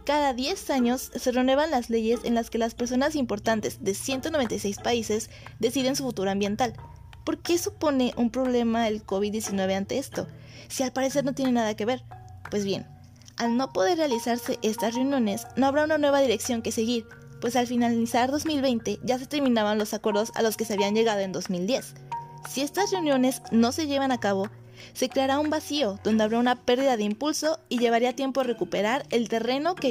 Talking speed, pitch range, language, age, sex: 190 wpm, 210-265 Hz, Spanish, 20-39, female